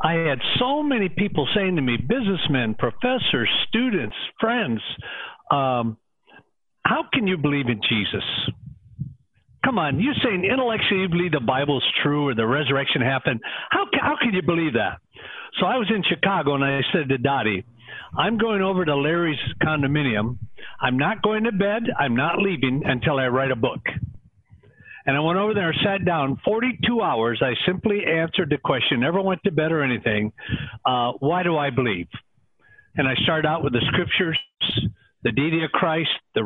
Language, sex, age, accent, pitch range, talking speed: English, male, 50-69, American, 130-190 Hz, 170 wpm